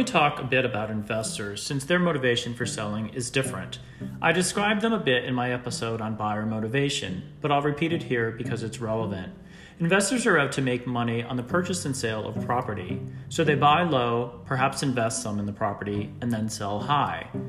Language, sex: English, male